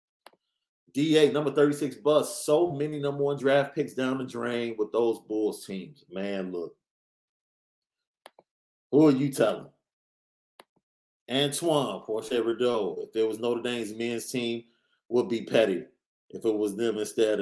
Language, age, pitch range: English, 30-49, 120-180 Hz